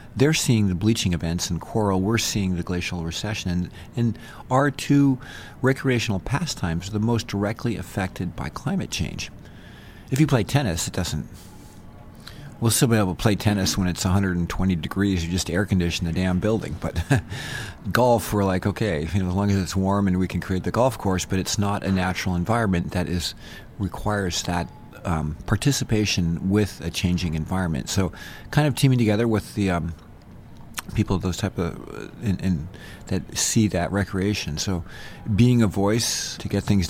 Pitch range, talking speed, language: 90-110 Hz, 175 wpm, English